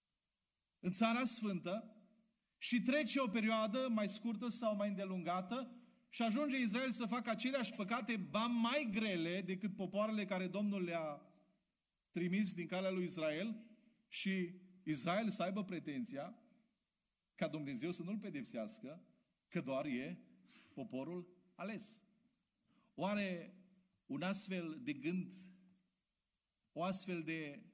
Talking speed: 120 wpm